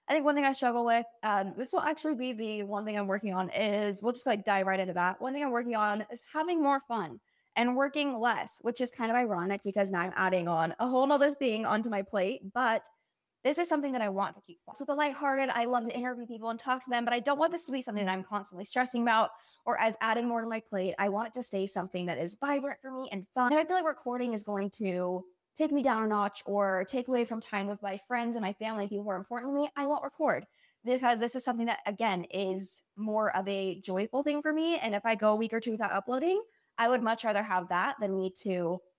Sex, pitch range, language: female, 195-255 Hz, English